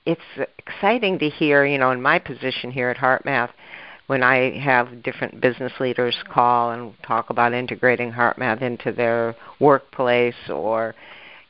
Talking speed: 145 wpm